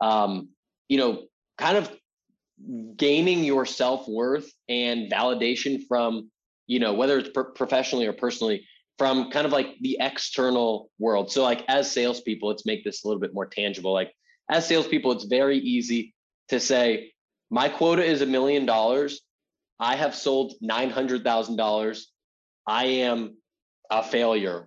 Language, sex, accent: English, male, American